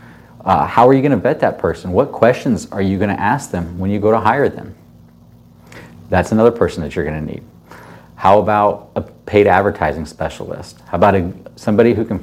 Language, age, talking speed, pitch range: English, 30-49, 205 wpm, 80-105 Hz